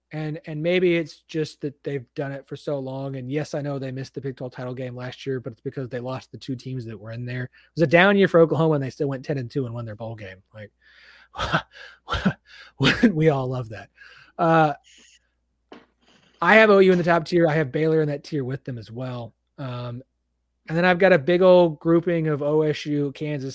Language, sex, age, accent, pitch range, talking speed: English, male, 30-49, American, 120-160 Hz, 230 wpm